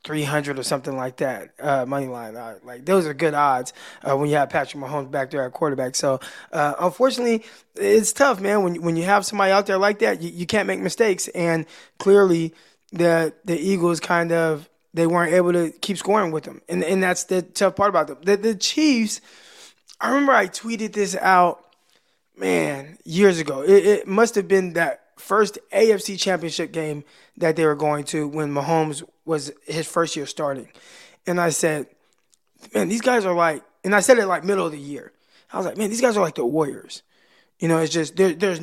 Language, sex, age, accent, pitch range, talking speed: English, male, 20-39, American, 160-205 Hz, 205 wpm